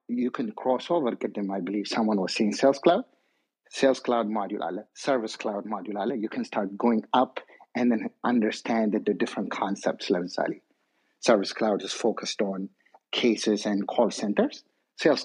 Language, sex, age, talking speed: Amharic, male, 50-69, 165 wpm